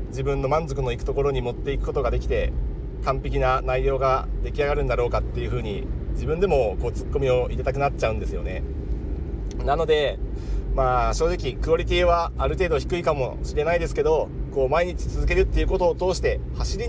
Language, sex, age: Japanese, male, 40-59